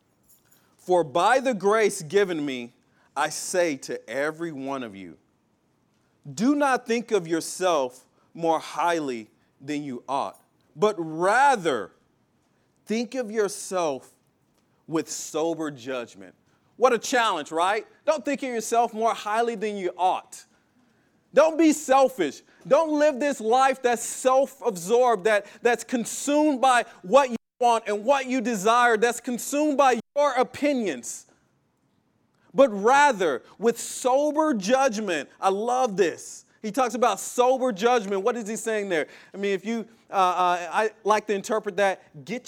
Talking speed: 140 wpm